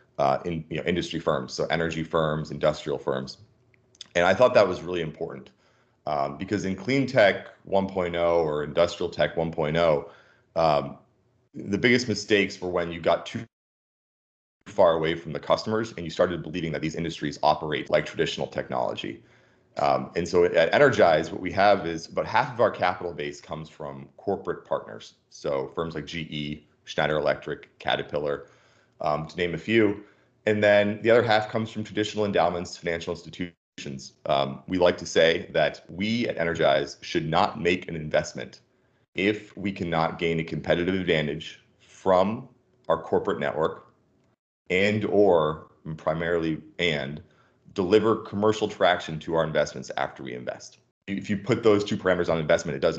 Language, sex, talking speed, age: English, male, 160 wpm, 30-49